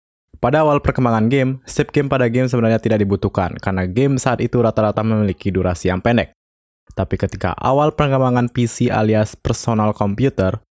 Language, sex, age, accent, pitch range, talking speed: Indonesian, male, 20-39, native, 95-125 Hz, 155 wpm